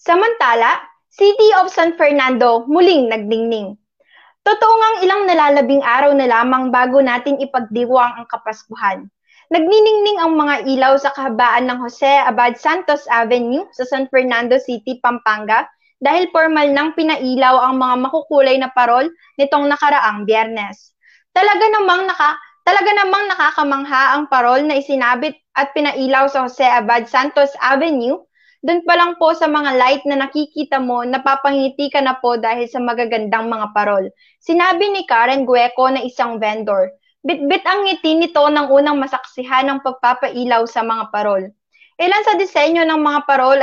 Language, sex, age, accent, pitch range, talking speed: Filipino, female, 20-39, native, 250-320 Hz, 150 wpm